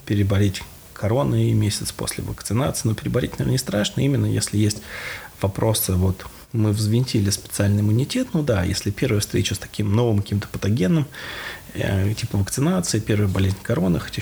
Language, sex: Russian, male